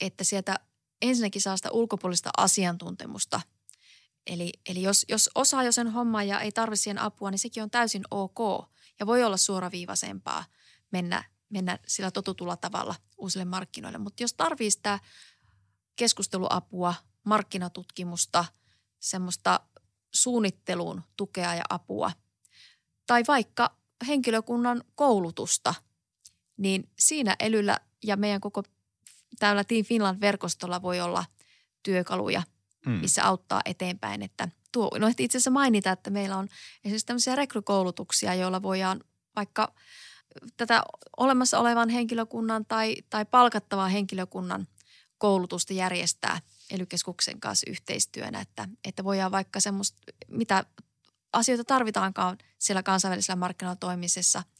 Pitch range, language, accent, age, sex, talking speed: 180-220 Hz, Finnish, native, 30-49, female, 115 wpm